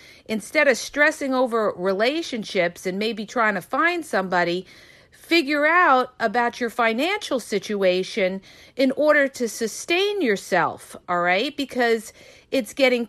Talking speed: 125 wpm